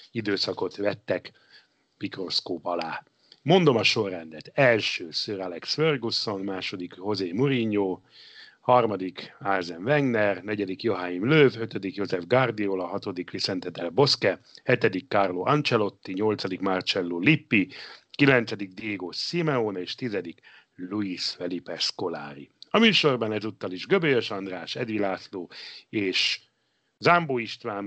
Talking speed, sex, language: 110 wpm, male, Hungarian